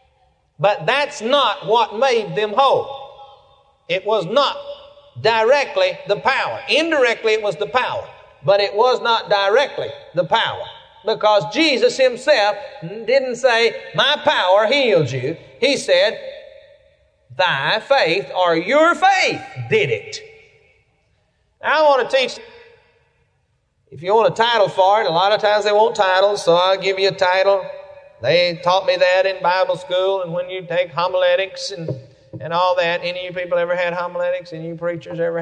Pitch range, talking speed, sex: 180-290 Hz, 160 wpm, male